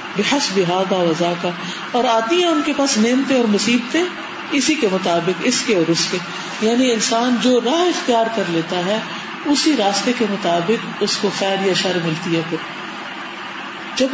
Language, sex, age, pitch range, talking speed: Urdu, female, 50-69, 195-260 Hz, 180 wpm